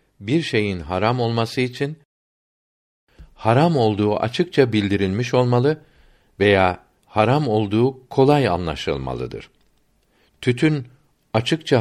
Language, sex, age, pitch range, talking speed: Turkish, male, 60-79, 105-135 Hz, 85 wpm